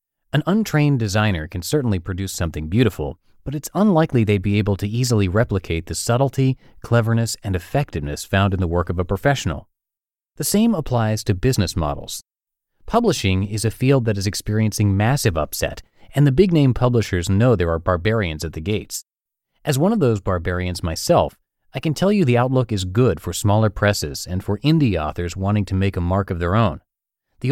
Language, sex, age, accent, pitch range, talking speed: English, male, 30-49, American, 90-130 Hz, 185 wpm